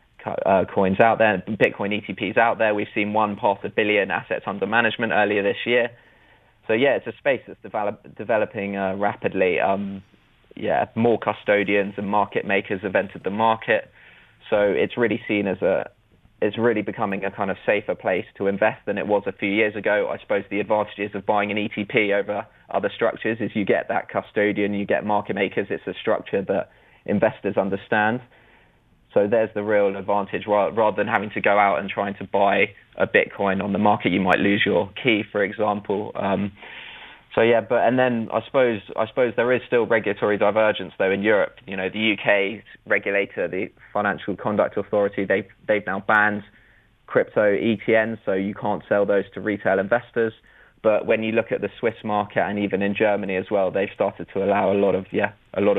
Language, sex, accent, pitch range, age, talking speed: English, male, British, 100-110 Hz, 20-39, 195 wpm